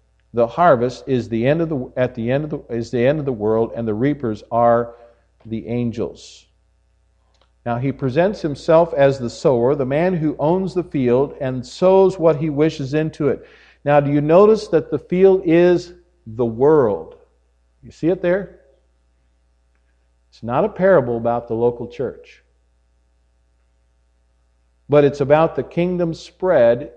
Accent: American